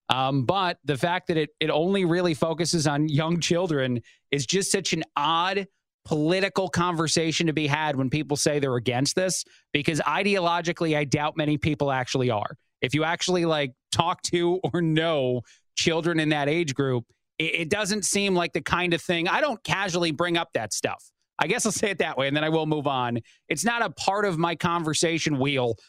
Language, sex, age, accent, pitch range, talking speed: English, male, 30-49, American, 150-175 Hz, 200 wpm